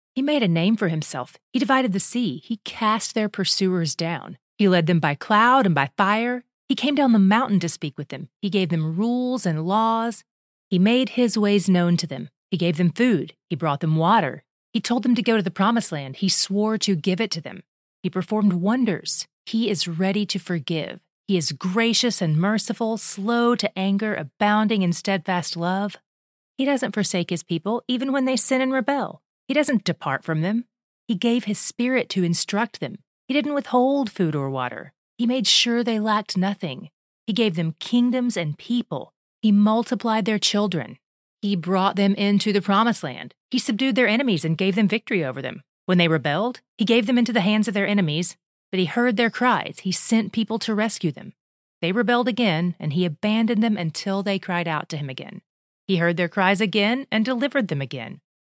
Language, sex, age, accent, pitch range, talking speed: English, female, 30-49, American, 175-235 Hz, 200 wpm